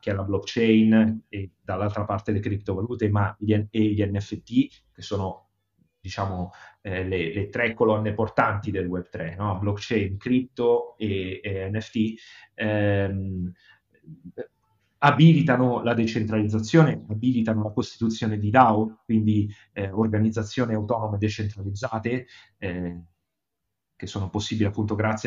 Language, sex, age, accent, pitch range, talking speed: Italian, male, 30-49, native, 95-115 Hz, 120 wpm